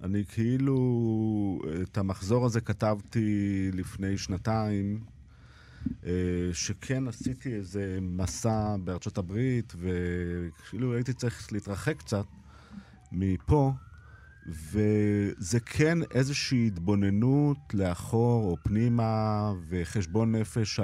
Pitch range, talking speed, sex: 95-120 Hz, 85 wpm, male